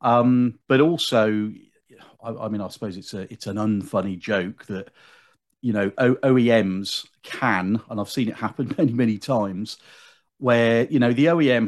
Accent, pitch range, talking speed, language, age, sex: British, 100-125 Hz, 165 wpm, English, 40-59, male